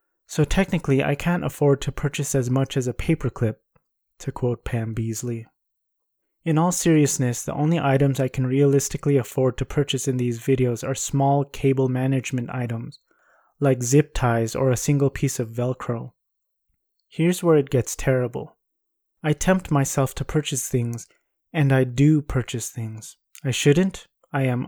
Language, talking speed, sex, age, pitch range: English, 160 wpm, male, 20-39, 125-150 Hz